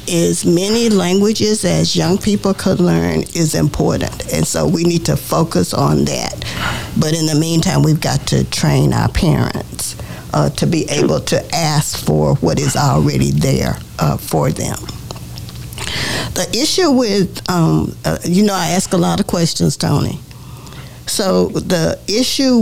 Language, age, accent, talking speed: English, 50-69, American, 155 wpm